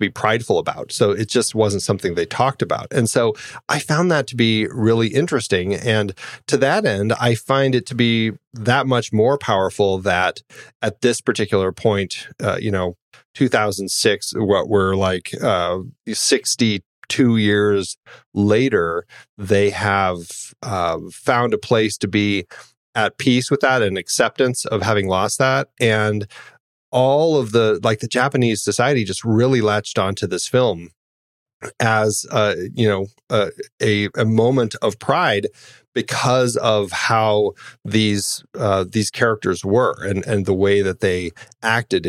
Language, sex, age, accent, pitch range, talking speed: English, male, 30-49, American, 100-115 Hz, 150 wpm